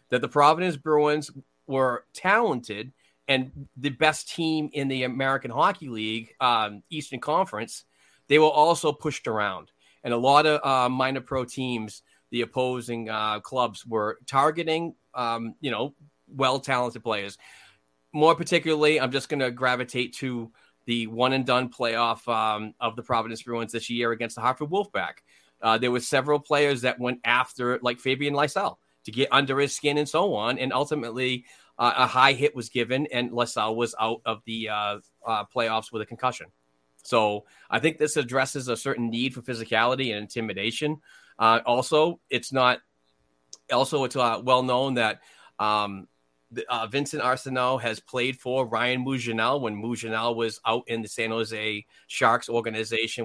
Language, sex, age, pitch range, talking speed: English, male, 30-49, 115-135 Hz, 165 wpm